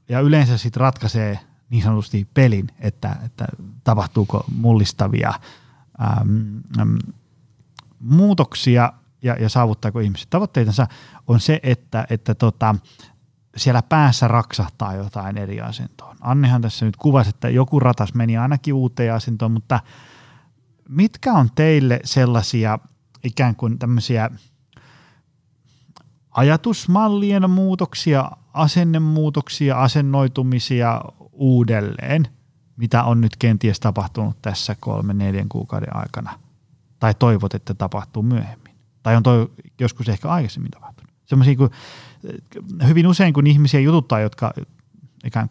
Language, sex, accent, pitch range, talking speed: Finnish, male, native, 115-140 Hz, 110 wpm